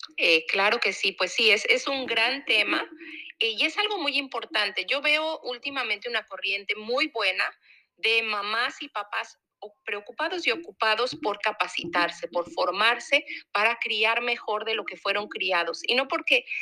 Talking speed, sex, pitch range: 165 wpm, female, 205-280 Hz